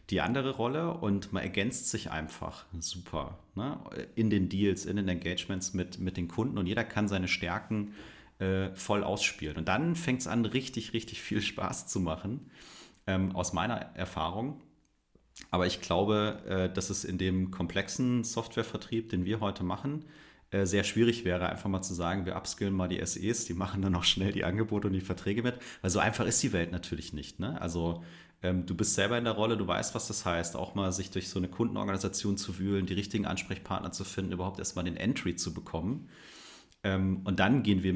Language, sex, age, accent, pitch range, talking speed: German, male, 30-49, German, 90-110 Hz, 195 wpm